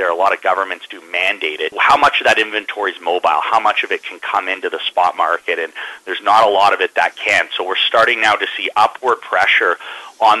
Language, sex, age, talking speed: English, male, 30-49, 255 wpm